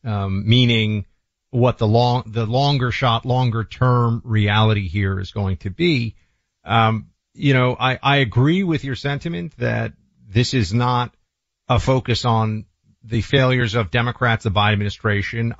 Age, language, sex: 40-59, English, male